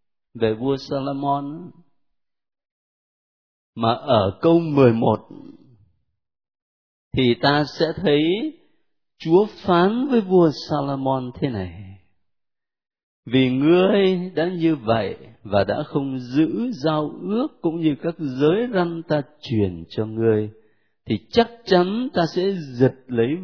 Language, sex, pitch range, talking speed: Vietnamese, male, 110-165 Hz, 120 wpm